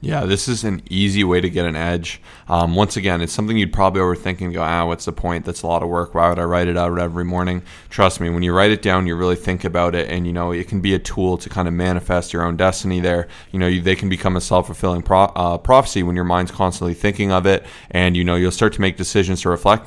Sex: male